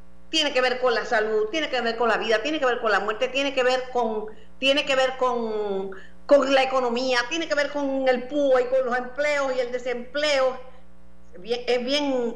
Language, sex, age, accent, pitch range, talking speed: Spanish, female, 50-69, American, 170-270 Hz, 225 wpm